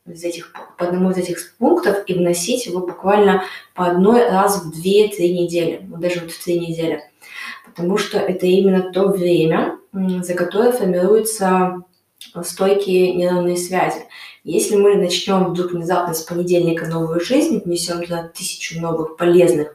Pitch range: 165-195 Hz